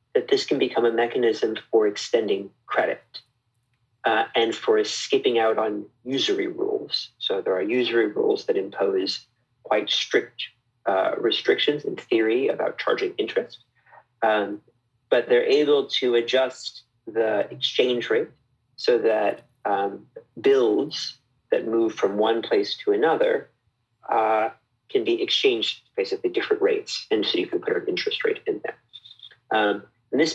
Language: English